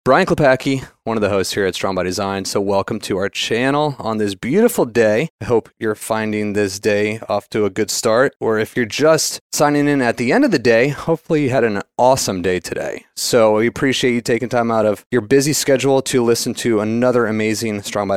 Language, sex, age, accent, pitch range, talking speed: English, male, 30-49, American, 105-125 Hz, 225 wpm